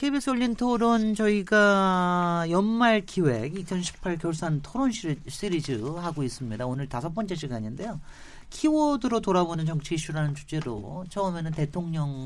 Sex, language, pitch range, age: male, Korean, 140-215 Hz, 40-59